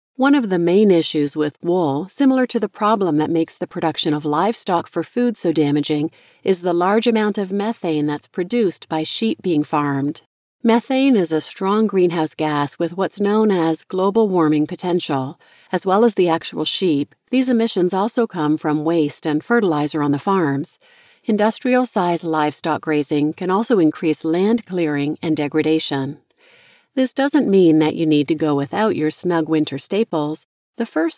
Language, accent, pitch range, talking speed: English, American, 155-215 Hz, 170 wpm